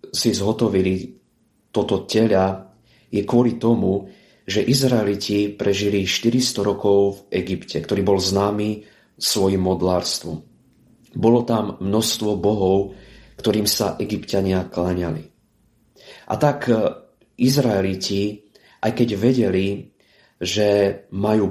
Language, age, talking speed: Slovak, 30-49, 100 wpm